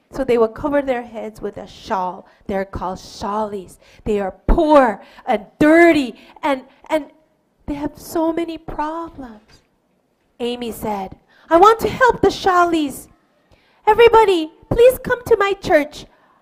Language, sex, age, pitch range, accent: Korean, female, 30-49, 235-360 Hz, American